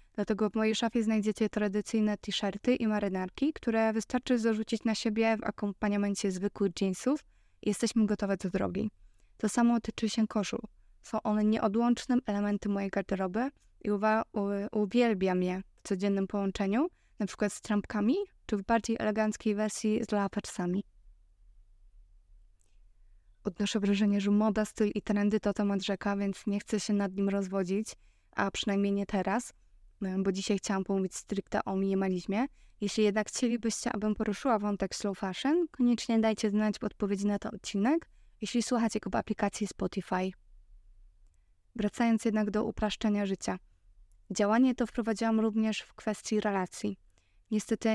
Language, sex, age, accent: Polish, female, 20-39, native